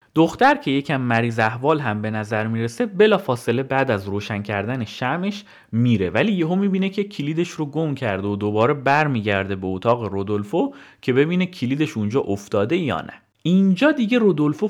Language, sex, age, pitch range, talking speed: Persian, male, 30-49, 100-160 Hz, 165 wpm